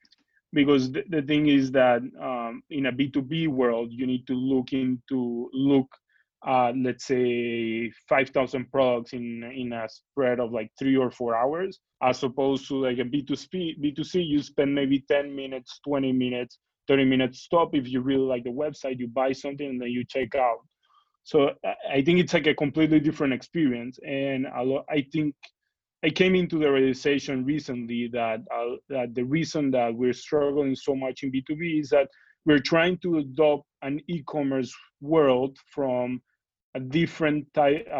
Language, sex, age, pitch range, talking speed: English, male, 20-39, 125-145 Hz, 175 wpm